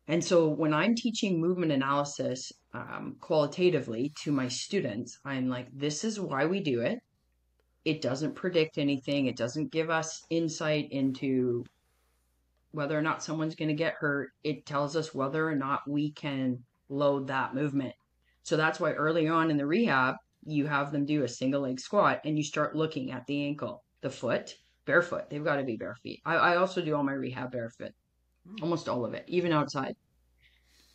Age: 30-49